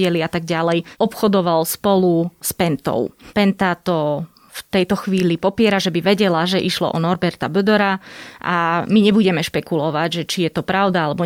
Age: 20-39